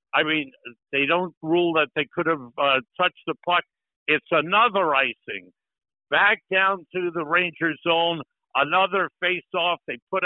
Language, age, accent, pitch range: English, 60-79, American, 140-185 Hz